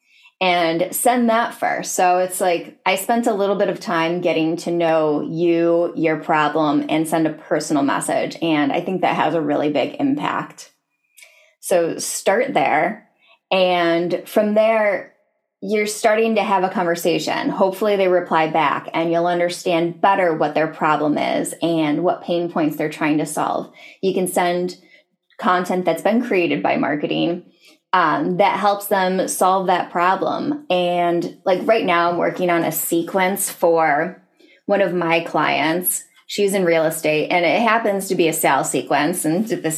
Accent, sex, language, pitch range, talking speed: American, female, English, 165-205 Hz, 165 wpm